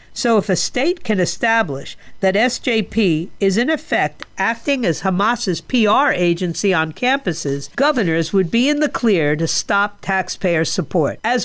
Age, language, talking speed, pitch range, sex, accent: 50-69, English, 150 wpm, 175-230 Hz, female, American